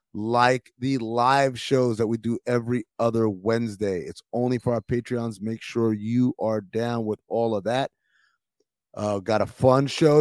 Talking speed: 170 wpm